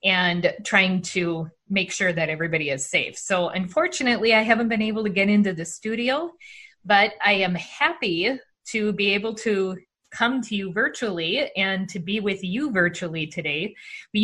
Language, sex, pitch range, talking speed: English, female, 185-230 Hz, 170 wpm